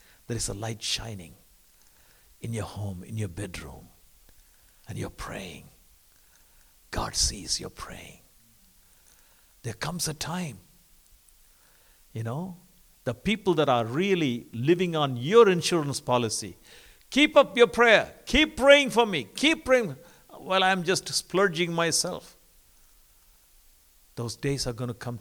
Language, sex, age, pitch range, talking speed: English, male, 60-79, 100-150 Hz, 130 wpm